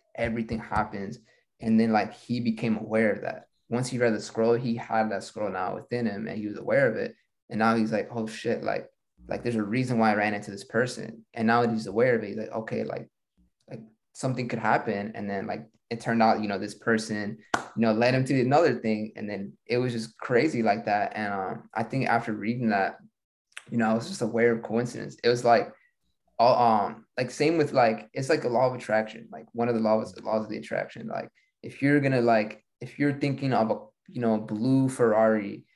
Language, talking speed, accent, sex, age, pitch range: English, 230 wpm, American, male, 20-39, 110-120 Hz